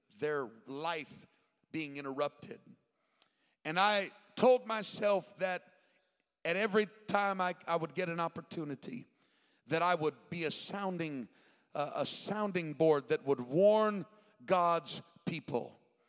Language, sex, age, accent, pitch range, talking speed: English, male, 50-69, American, 165-220 Hz, 125 wpm